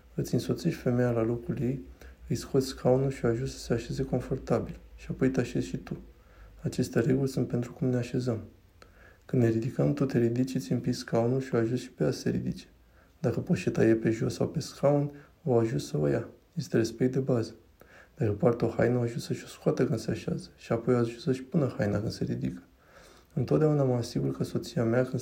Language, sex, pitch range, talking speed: Romanian, male, 115-130 Hz, 210 wpm